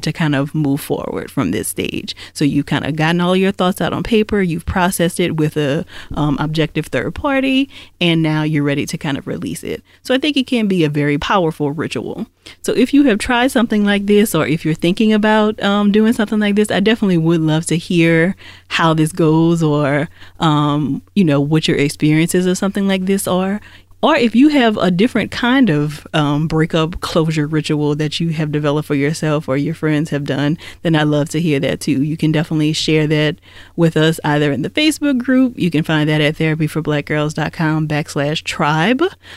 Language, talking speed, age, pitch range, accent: English, 205 wpm, 30-49, 150-185 Hz, American